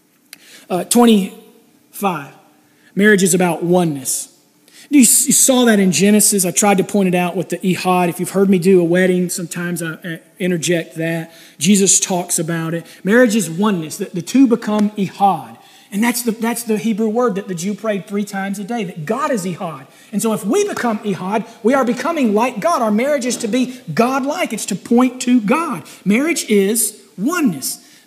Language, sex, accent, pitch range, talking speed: English, male, American, 180-230 Hz, 185 wpm